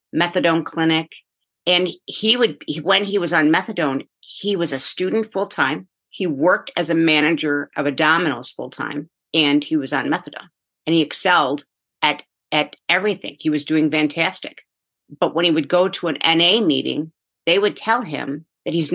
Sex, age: female, 50-69